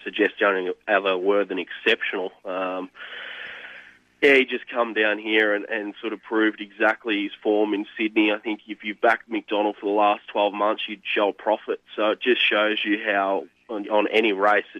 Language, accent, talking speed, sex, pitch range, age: English, Australian, 190 wpm, male, 95-140 Hz, 20-39